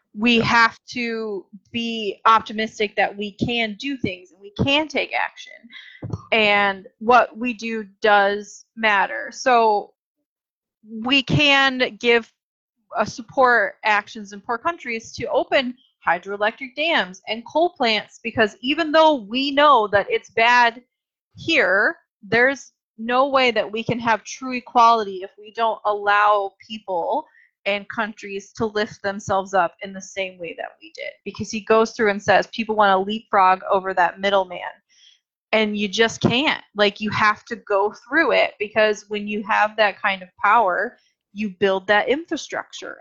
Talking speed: 155 wpm